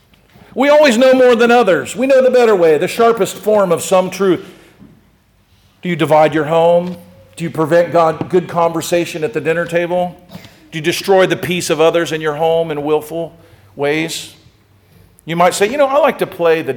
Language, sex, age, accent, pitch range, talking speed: English, male, 50-69, American, 125-170 Hz, 195 wpm